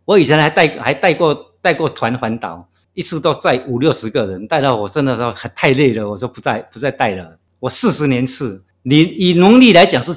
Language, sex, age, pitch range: Chinese, male, 50-69, 115-175 Hz